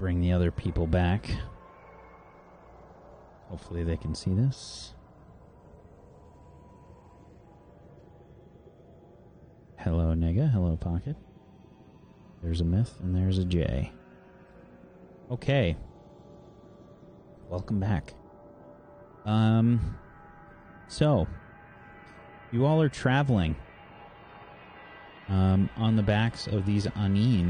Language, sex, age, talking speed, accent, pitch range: English, male, 30-49, 80 wpm, American, 85-110 Hz